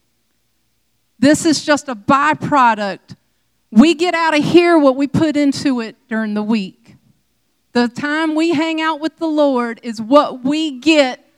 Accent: American